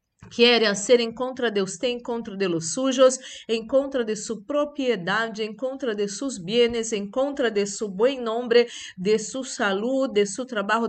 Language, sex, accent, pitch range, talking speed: Spanish, female, Brazilian, 190-260 Hz, 175 wpm